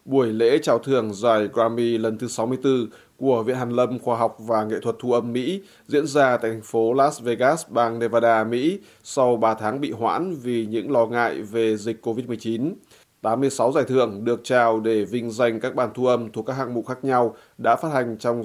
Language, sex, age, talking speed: Vietnamese, male, 20-39, 210 wpm